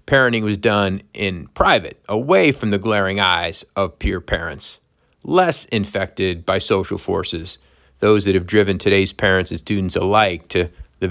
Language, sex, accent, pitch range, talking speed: English, male, American, 95-115 Hz, 155 wpm